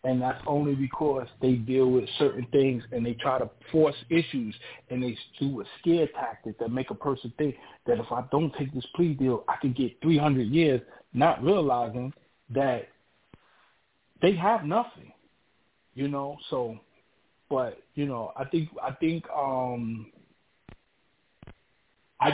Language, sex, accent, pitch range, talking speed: English, male, American, 120-155 Hz, 150 wpm